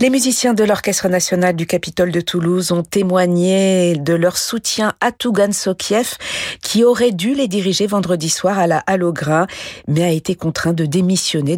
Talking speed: 170 wpm